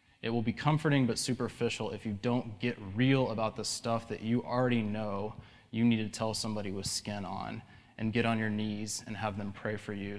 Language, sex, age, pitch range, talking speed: English, male, 20-39, 105-120 Hz, 220 wpm